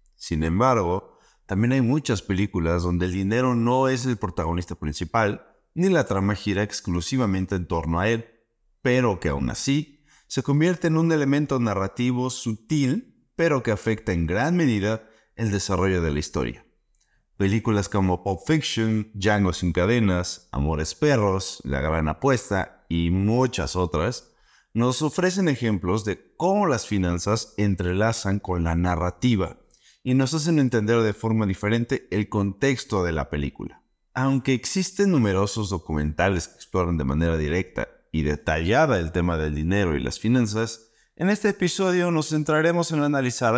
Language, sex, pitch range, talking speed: Spanish, male, 90-125 Hz, 150 wpm